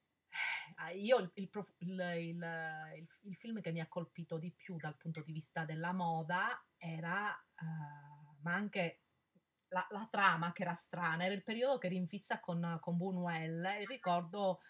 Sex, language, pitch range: female, Italian, 165-205 Hz